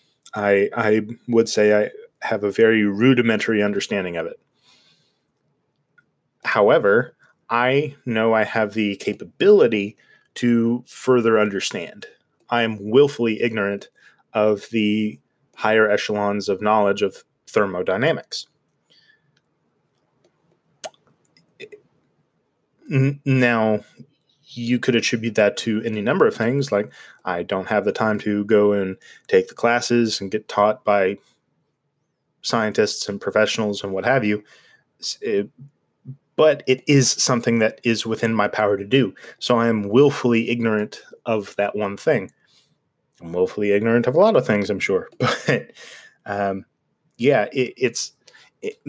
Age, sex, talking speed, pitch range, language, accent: 20-39, male, 130 wpm, 105-125 Hz, English, American